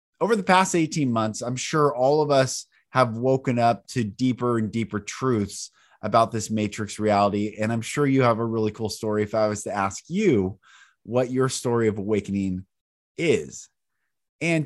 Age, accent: 30-49, American